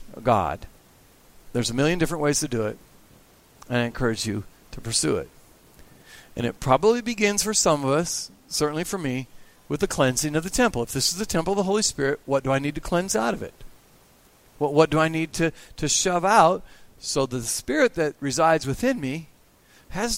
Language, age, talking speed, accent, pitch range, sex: English, 50-69, 200 wpm, American, 140-200 Hz, male